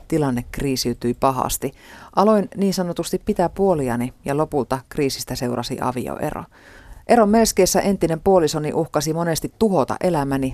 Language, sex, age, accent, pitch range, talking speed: Finnish, female, 30-49, native, 130-165 Hz, 120 wpm